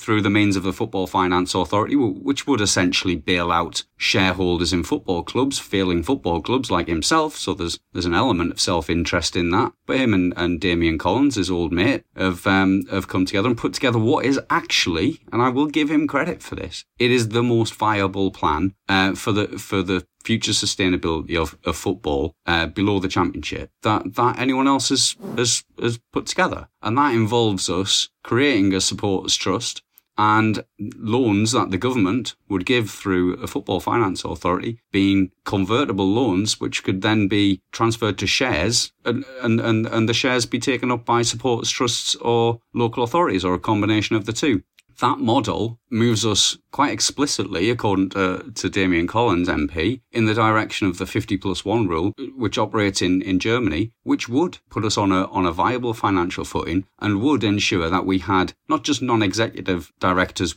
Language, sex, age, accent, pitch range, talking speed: English, male, 40-59, British, 95-115 Hz, 185 wpm